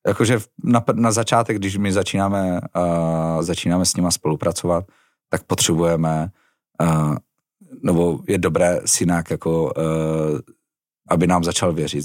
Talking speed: 120 wpm